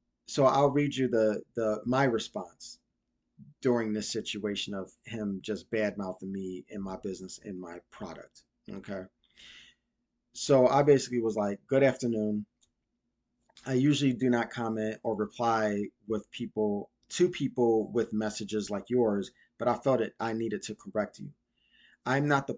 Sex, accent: male, American